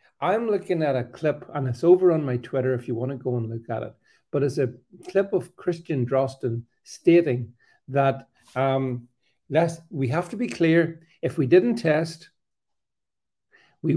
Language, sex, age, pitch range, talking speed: English, male, 50-69, 125-175 Hz, 170 wpm